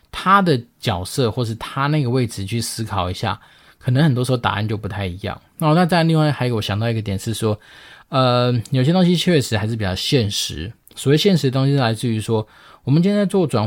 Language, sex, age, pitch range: Chinese, male, 20-39, 110-135 Hz